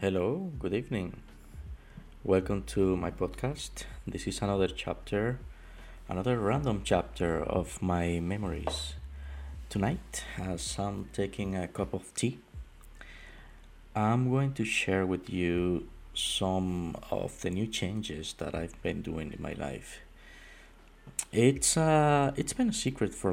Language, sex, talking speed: English, male, 130 wpm